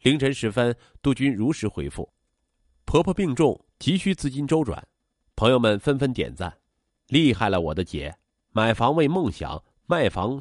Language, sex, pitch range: Chinese, male, 95-145 Hz